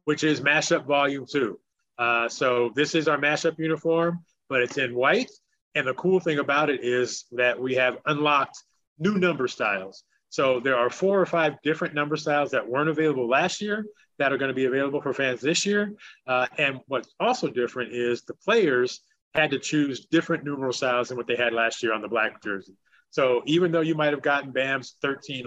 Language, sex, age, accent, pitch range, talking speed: English, male, 30-49, American, 125-160 Hz, 205 wpm